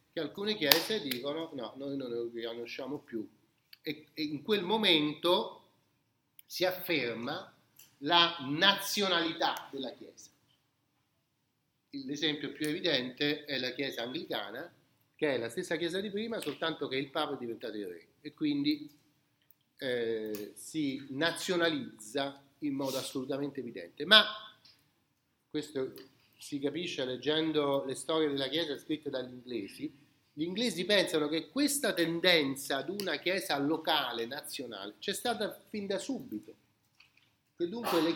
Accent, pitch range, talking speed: native, 135-185 Hz, 130 wpm